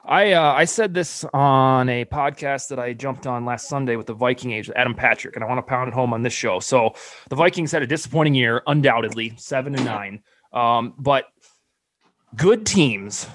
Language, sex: English, male